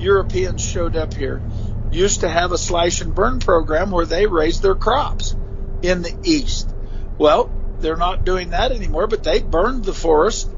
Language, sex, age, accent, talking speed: English, male, 50-69, American, 175 wpm